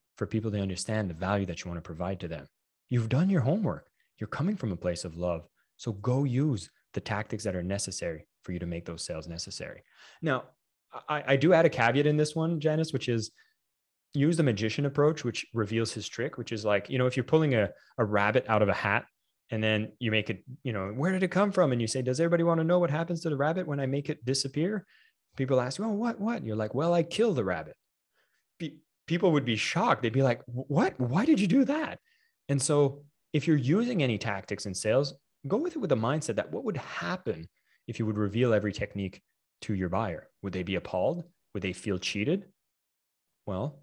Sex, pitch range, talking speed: male, 100-150 Hz, 230 wpm